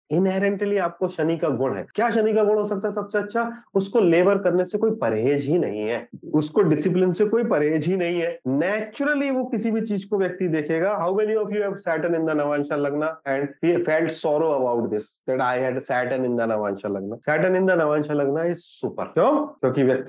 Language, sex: Hindi, male